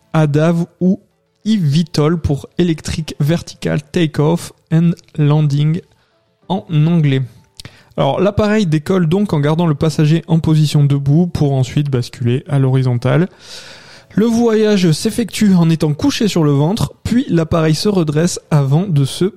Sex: male